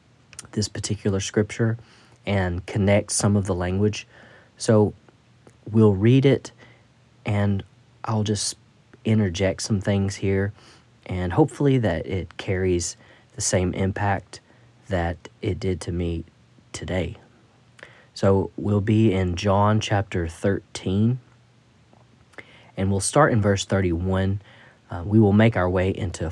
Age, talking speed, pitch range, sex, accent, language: 40-59, 125 wpm, 95-120 Hz, male, American, English